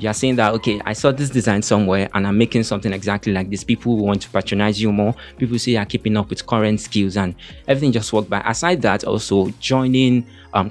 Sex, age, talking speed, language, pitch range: male, 20-39, 240 wpm, English, 100-120 Hz